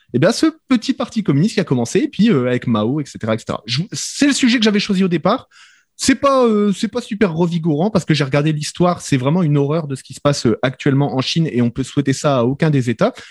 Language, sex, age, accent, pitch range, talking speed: French, male, 30-49, French, 130-185 Hz, 265 wpm